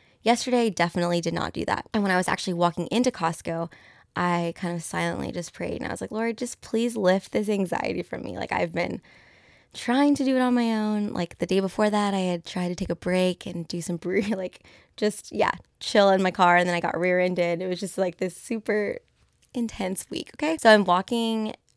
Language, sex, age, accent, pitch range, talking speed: English, female, 20-39, American, 170-205 Hz, 225 wpm